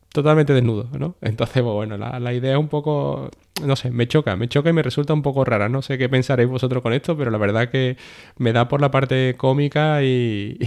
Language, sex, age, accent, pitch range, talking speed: Spanish, male, 20-39, Spanish, 105-125 Hz, 230 wpm